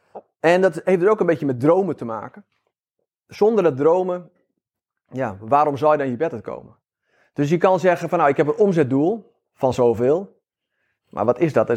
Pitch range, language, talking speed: 135-185 Hz, Dutch, 205 wpm